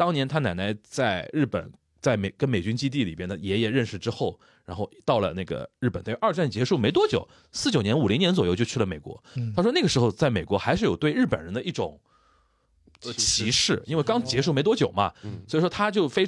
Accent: native